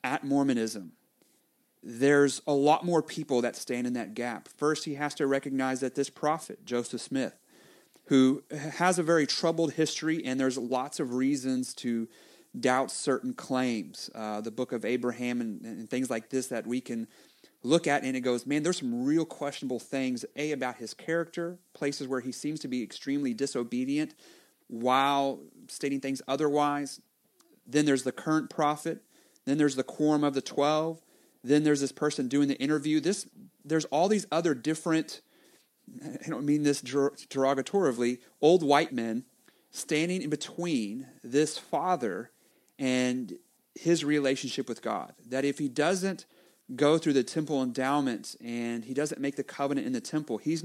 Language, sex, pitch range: English, male, 125-155 Hz